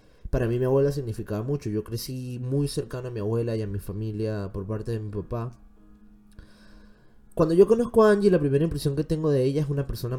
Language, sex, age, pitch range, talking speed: Spanish, male, 20-39, 110-140 Hz, 220 wpm